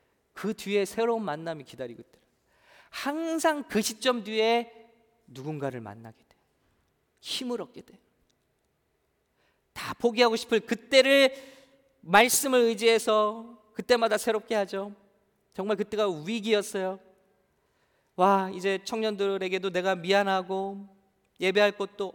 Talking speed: 90 wpm